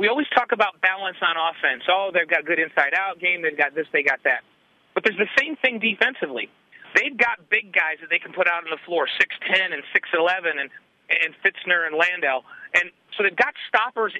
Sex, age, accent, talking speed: male, 40-59, American, 215 wpm